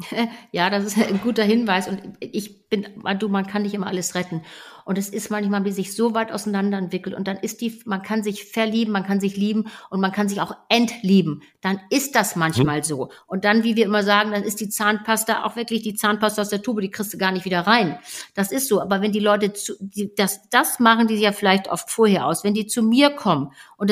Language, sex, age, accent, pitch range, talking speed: German, female, 50-69, German, 195-230 Hz, 240 wpm